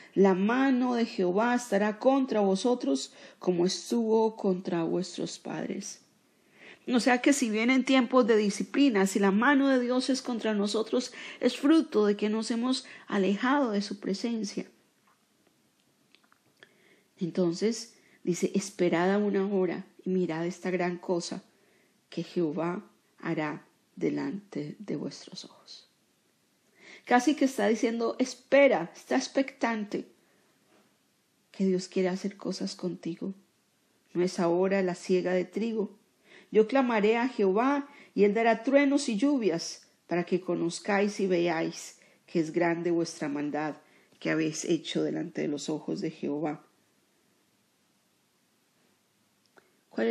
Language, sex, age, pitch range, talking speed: Spanish, female, 40-59, 180-240 Hz, 125 wpm